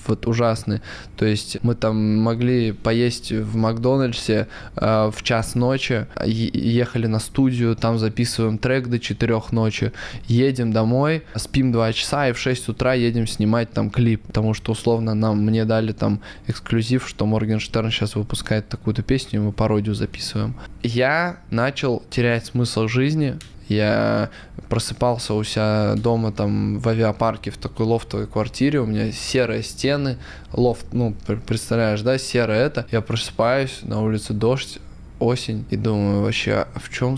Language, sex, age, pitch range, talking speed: Russian, male, 20-39, 110-125 Hz, 150 wpm